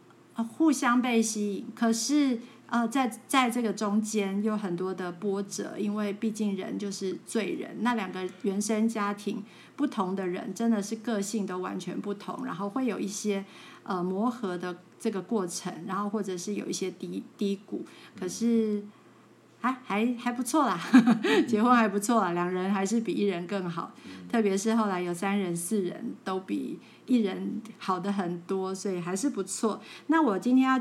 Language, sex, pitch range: Chinese, female, 195-230 Hz